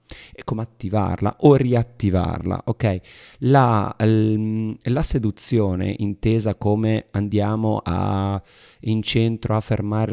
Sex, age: male, 40-59